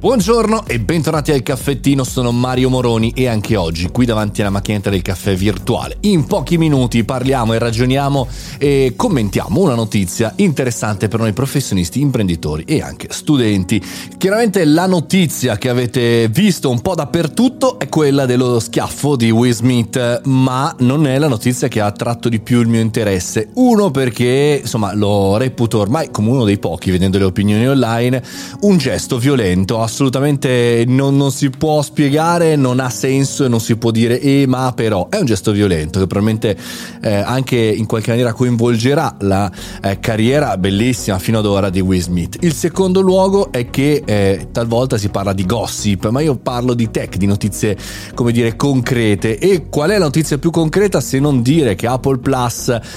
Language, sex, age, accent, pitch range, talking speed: Italian, male, 30-49, native, 110-140 Hz, 175 wpm